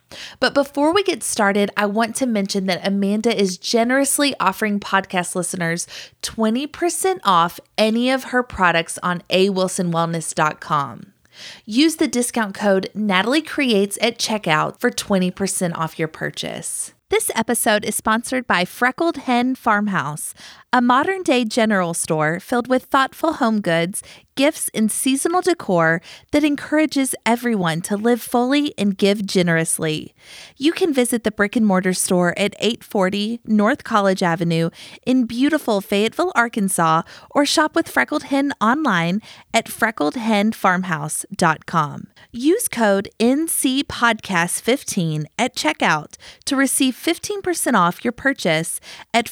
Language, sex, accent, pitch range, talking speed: English, female, American, 185-265 Hz, 125 wpm